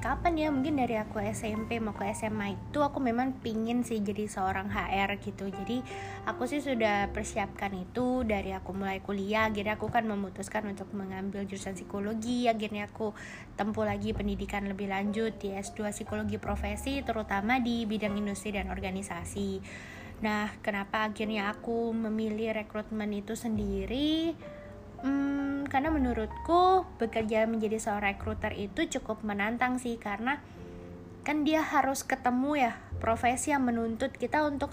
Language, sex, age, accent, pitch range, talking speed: Indonesian, female, 20-39, native, 200-255 Hz, 140 wpm